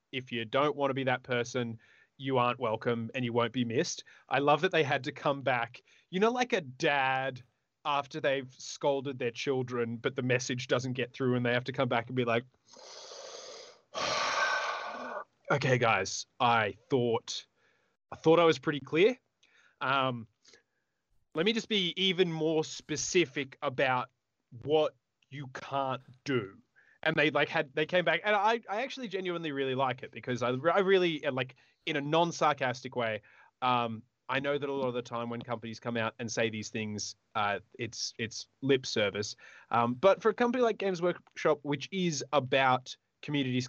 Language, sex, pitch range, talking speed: English, male, 120-160 Hz, 180 wpm